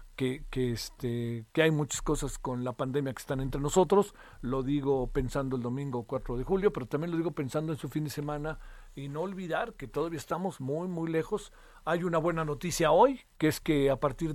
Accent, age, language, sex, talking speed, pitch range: Mexican, 50-69, Spanish, male, 215 wpm, 135-185 Hz